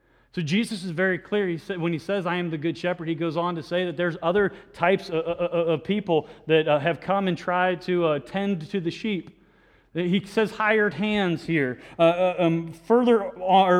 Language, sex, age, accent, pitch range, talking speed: English, male, 30-49, American, 165-210 Hz, 215 wpm